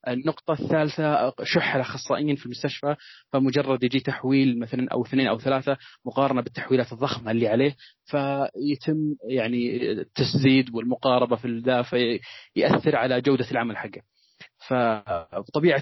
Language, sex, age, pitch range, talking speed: Arabic, male, 30-49, 120-140 Hz, 120 wpm